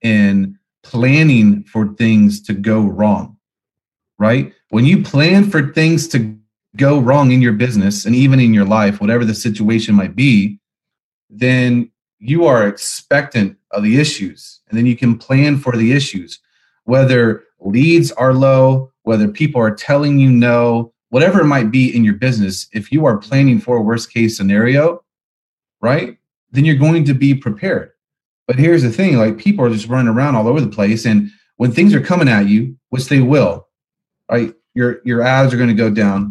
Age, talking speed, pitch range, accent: 30-49, 180 wpm, 110-140 Hz, American